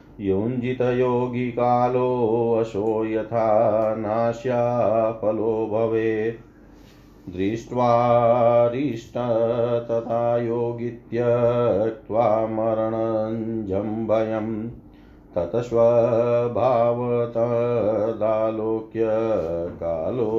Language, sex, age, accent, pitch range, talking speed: Hindi, male, 40-59, native, 110-115 Hz, 35 wpm